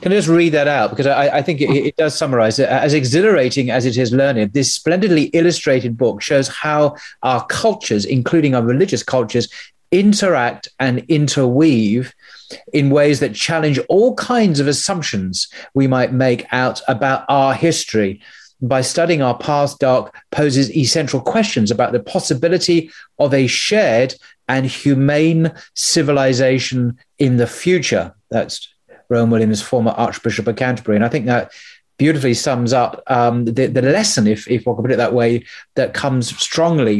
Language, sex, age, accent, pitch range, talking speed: English, male, 40-59, British, 120-155 Hz, 165 wpm